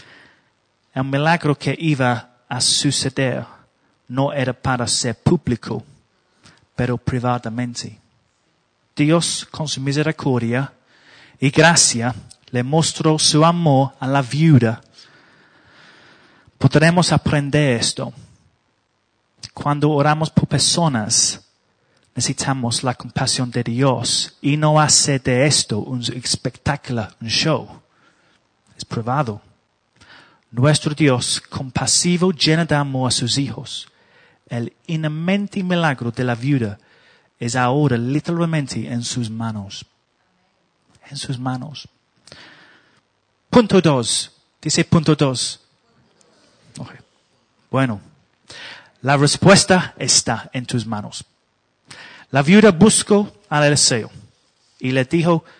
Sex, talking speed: male, 100 wpm